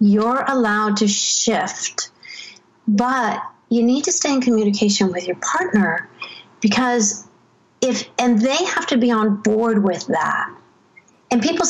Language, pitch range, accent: English, 195-255 Hz, American